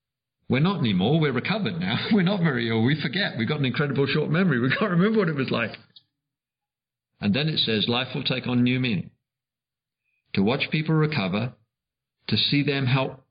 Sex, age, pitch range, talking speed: male, 50-69, 115-145 Hz, 195 wpm